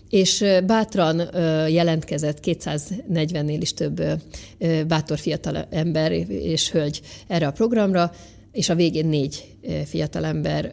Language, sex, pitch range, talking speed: Hungarian, female, 150-175 Hz, 110 wpm